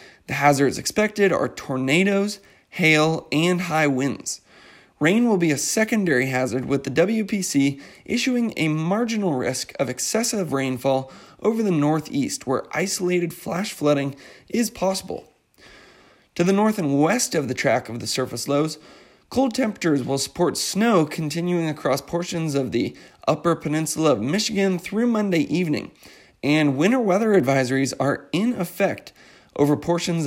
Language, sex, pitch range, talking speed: English, male, 140-200 Hz, 140 wpm